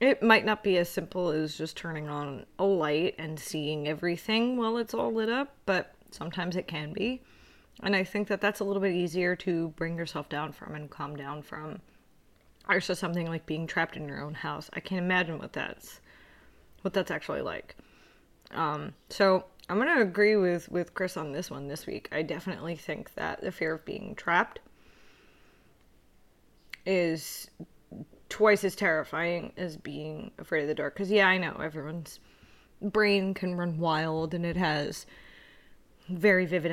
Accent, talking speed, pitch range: American, 180 wpm, 155-190 Hz